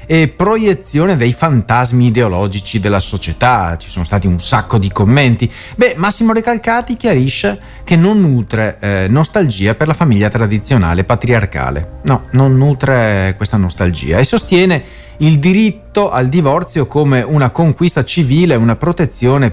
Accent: native